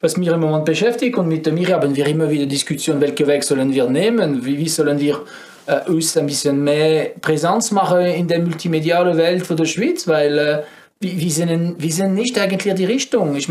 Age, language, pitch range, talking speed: 40-59, German, 150-190 Hz, 210 wpm